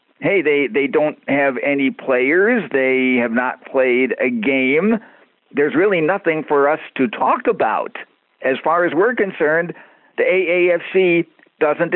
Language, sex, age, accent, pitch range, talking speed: English, male, 50-69, American, 130-185 Hz, 145 wpm